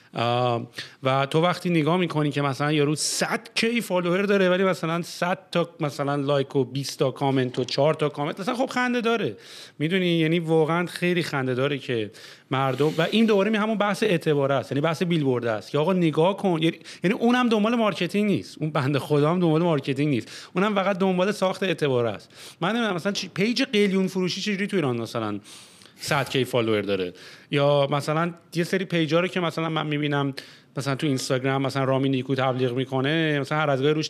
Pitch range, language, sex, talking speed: 140-185 Hz, English, male, 190 wpm